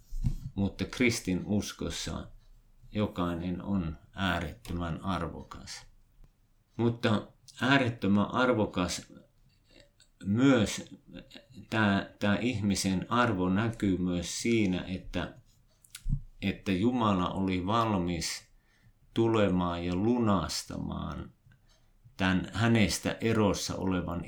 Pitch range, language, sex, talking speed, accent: 90-110 Hz, Finnish, male, 75 wpm, native